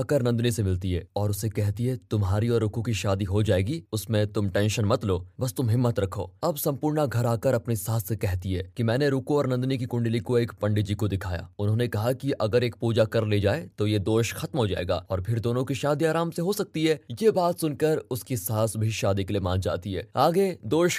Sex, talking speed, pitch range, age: male, 245 wpm, 105-140 Hz, 20-39